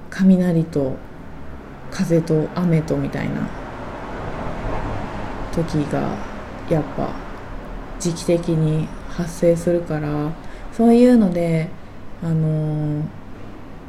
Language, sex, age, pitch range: Japanese, female, 20-39, 155-210 Hz